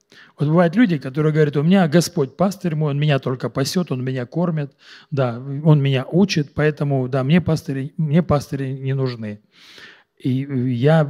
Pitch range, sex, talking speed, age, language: 130-185 Hz, male, 155 wpm, 40-59, Russian